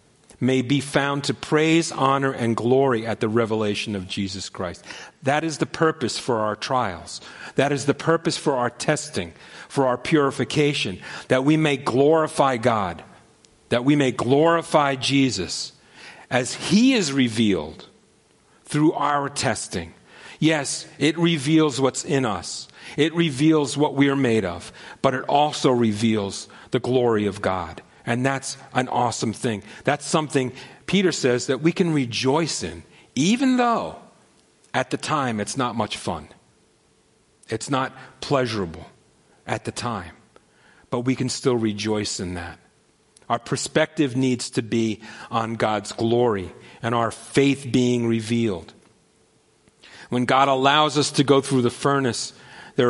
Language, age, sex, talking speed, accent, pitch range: English, 40-59, male, 145 wpm, American, 115-145 Hz